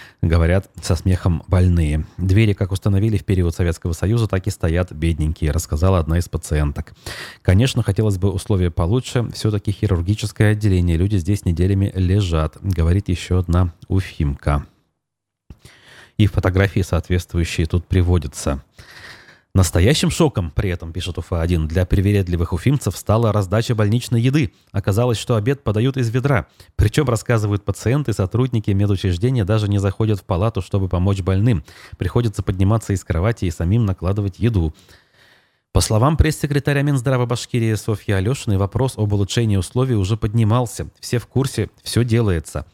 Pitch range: 90-115 Hz